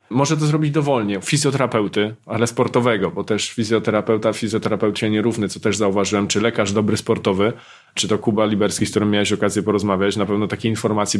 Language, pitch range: Polish, 110-135 Hz